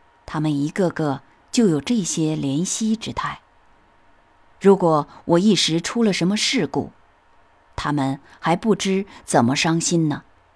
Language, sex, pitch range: Chinese, female, 135-220 Hz